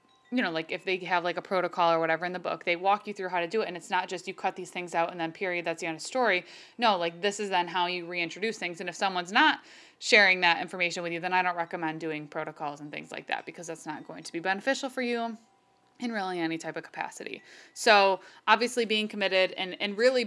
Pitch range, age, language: 180-225 Hz, 20-39, English